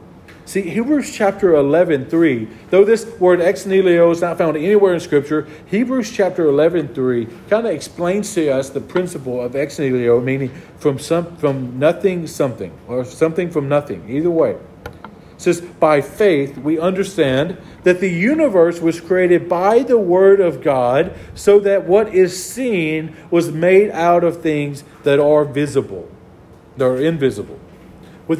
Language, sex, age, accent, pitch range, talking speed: English, male, 40-59, American, 140-180 Hz, 160 wpm